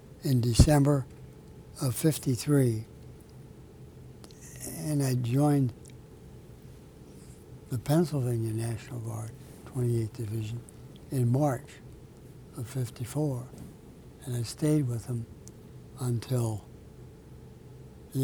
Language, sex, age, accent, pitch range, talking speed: English, male, 60-79, American, 120-145 Hz, 80 wpm